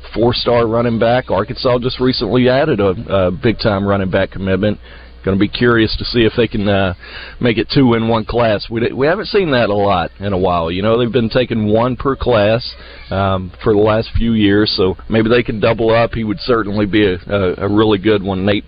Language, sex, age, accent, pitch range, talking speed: English, male, 40-59, American, 100-120 Hz, 225 wpm